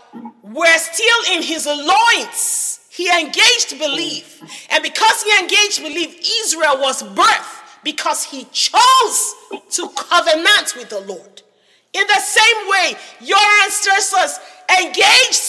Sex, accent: female, Nigerian